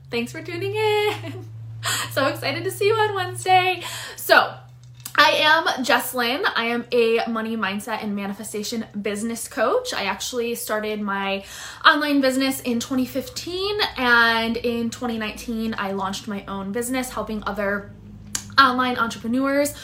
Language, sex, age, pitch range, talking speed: English, female, 20-39, 210-270 Hz, 135 wpm